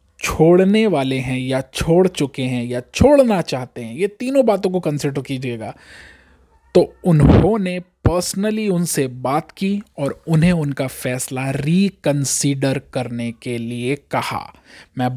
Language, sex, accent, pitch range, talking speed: Hindi, male, native, 135-185 Hz, 130 wpm